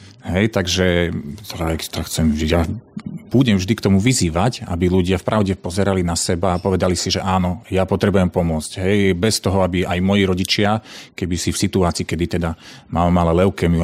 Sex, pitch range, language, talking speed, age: male, 85-100 Hz, Slovak, 170 wpm, 40-59